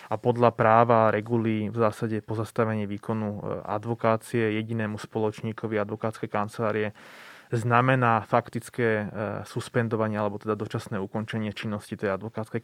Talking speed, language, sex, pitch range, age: 110 wpm, Slovak, male, 105-120 Hz, 20-39